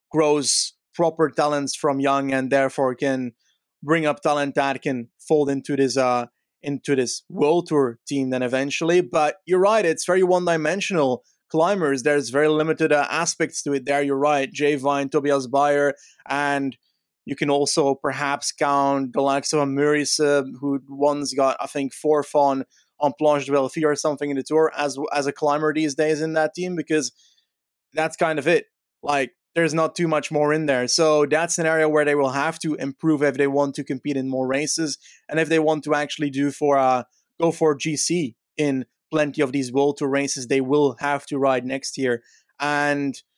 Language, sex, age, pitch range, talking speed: English, male, 30-49, 140-155 Hz, 190 wpm